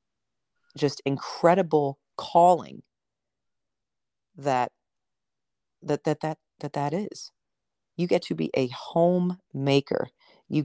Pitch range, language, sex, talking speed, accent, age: 130-155 Hz, English, female, 100 wpm, American, 40-59